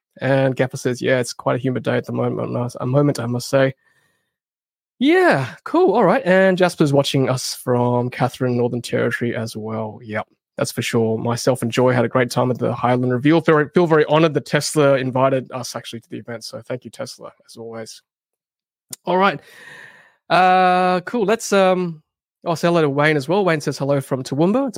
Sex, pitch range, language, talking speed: male, 130-175 Hz, English, 195 wpm